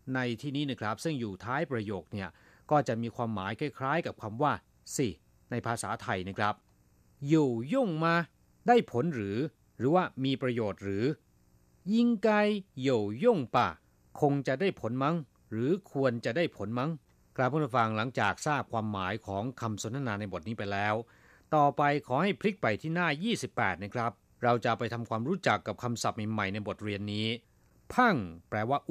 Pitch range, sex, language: 105-155 Hz, male, Thai